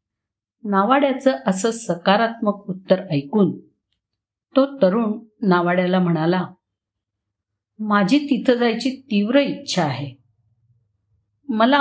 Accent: native